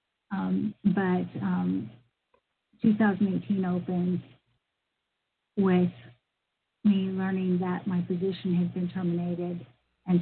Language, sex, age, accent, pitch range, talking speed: English, female, 50-69, American, 140-195 Hz, 90 wpm